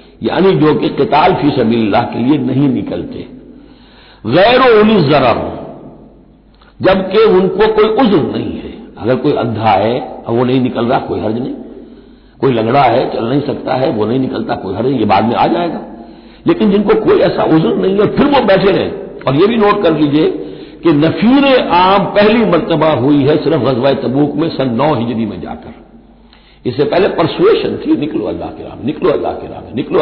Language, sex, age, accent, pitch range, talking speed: Hindi, male, 60-79, native, 145-215 Hz, 190 wpm